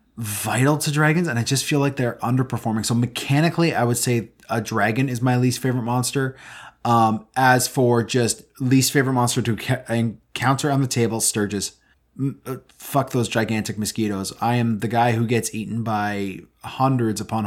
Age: 20-39